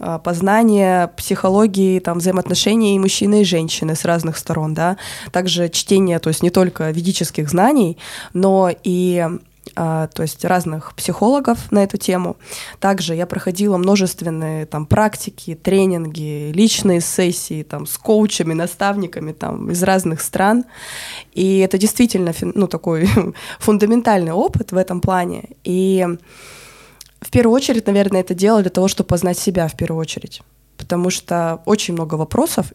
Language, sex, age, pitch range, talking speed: Russian, female, 20-39, 175-200 Hz, 140 wpm